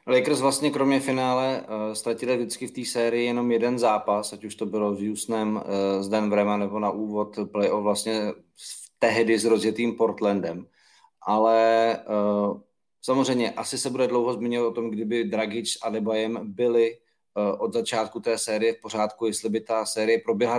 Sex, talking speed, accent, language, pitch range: male, 165 wpm, native, Czech, 110-125 Hz